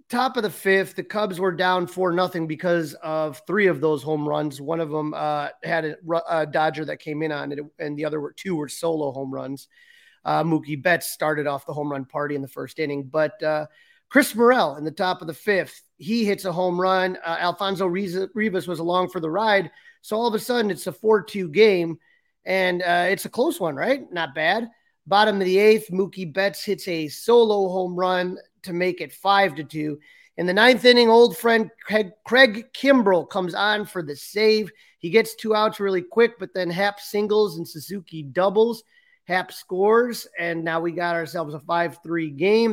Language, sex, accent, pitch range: English, male, American, 160-215 Hz